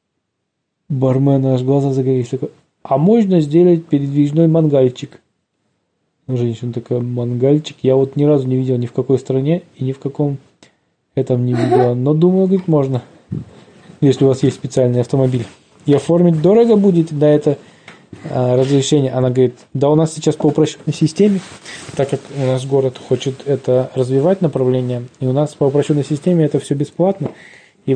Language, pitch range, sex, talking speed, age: Russian, 130-155 Hz, male, 160 wpm, 20-39